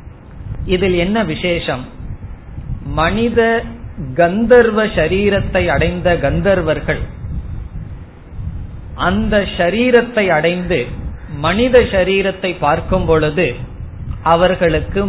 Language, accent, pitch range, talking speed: Tamil, native, 135-185 Hz, 55 wpm